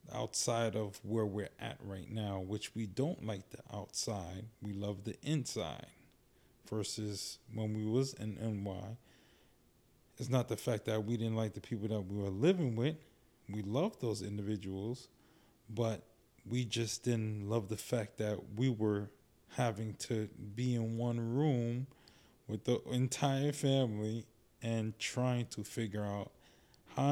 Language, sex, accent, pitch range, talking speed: English, male, American, 105-130 Hz, 150 wpm